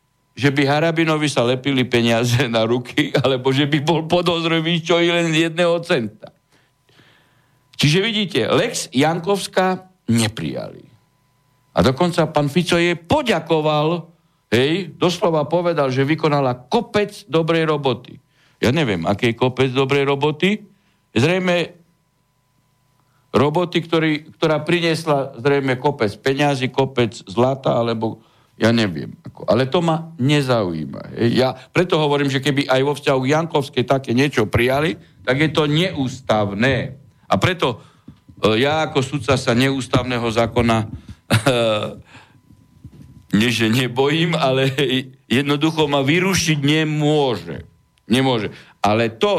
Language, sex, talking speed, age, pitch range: Slovak, male, 115 wpm, 60-79, 120-160 Hz